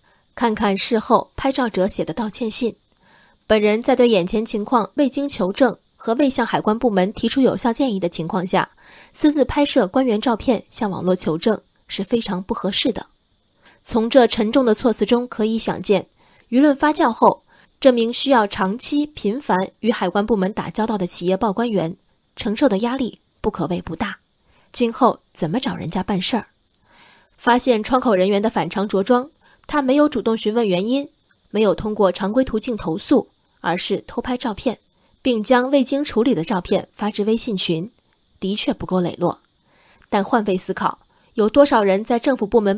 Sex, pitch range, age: female, 195-250 Hz, 20-39